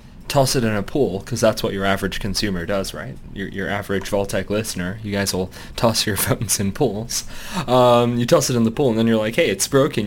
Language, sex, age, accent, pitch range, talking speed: English, male, 20-39, American, 105-130 Hz, 240 wpm